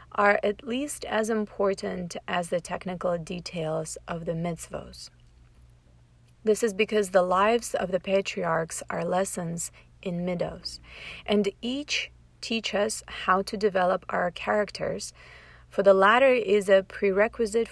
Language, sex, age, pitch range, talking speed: English, female, 30-49, 170-215 Hz, 130 wpm